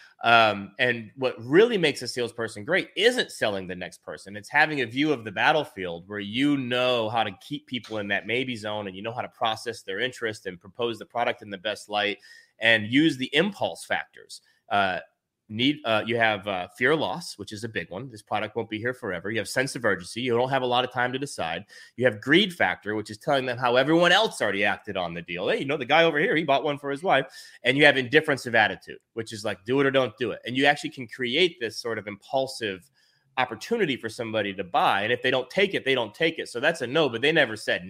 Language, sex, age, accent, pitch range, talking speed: English, male, 30-49, American, 110-140 Hz, 255 wpm